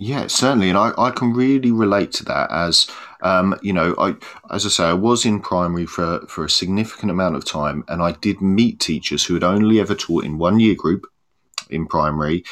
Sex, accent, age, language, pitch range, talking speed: male, British, 40-59, English, 80-95 Hz, 215 wpm